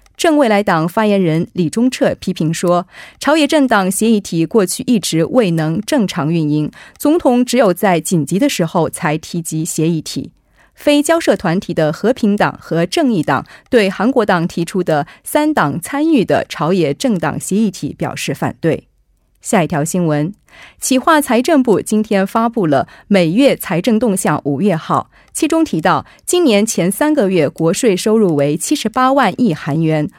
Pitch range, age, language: 165-250 Hz, 30-49, Korean